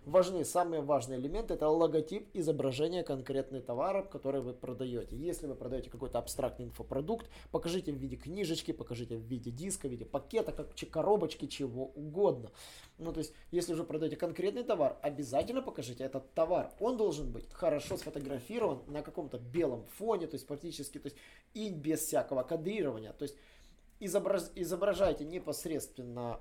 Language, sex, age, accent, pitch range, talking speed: Russian, male, 20-39, native, 135-175 Hz, 155 wpm